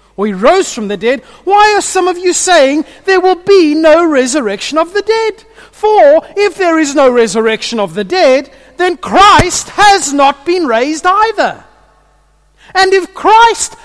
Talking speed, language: 165 wpm, English